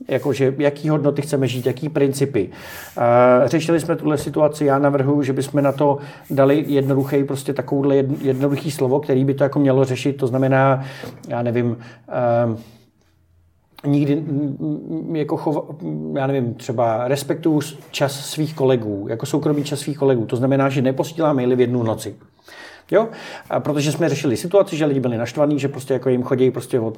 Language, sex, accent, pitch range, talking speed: Czech, male, native, 125-150 Hz, 165 wpm